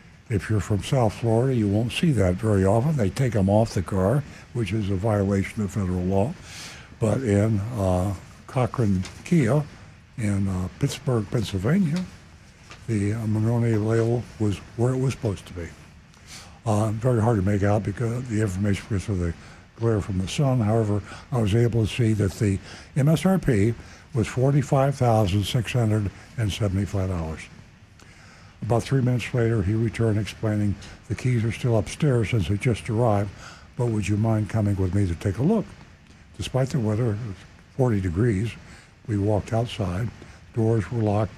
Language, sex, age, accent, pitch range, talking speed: English, male, 60-79, American, 100-120 Hz, 160 wpm